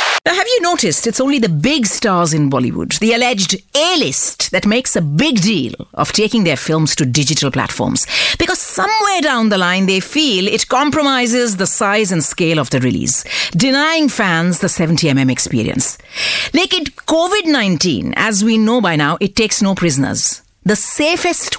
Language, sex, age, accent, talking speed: English, female, 50-69, Indian, 170 wpm